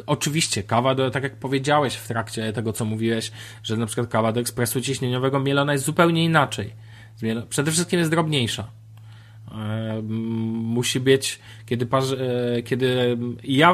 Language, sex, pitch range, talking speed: Polish, male, 115-145 Hz, 130 wpm